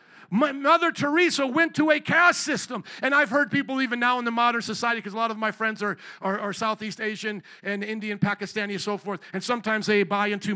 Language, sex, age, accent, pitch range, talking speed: English, male, 50-69, American, 195-260 Hz, 225 wpm